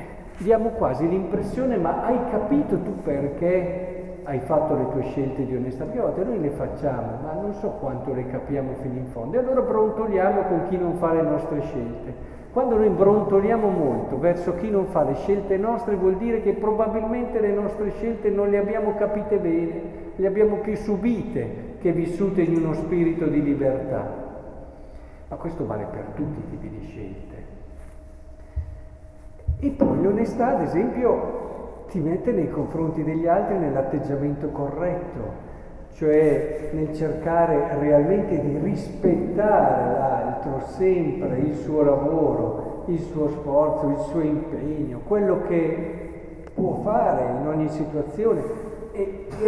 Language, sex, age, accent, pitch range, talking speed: Italian, male, 50-69, native, 150-210 Hz, 145 wpm